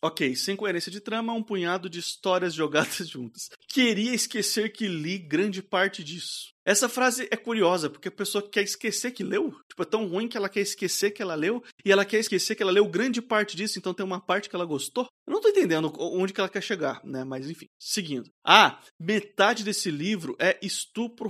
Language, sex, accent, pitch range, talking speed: Portuguese, male, Brazilian, 150-200 Hz, 215 wpm